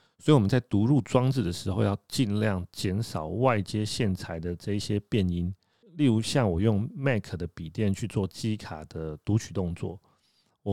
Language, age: Chinese, 30-49